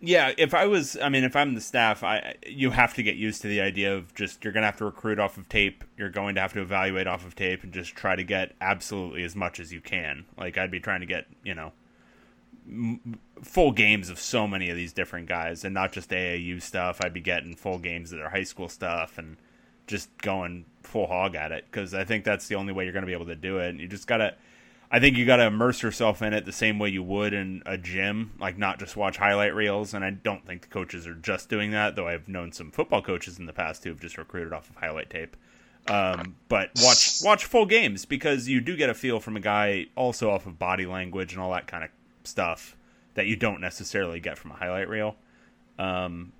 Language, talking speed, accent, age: English, 250 wpm, American, 30-49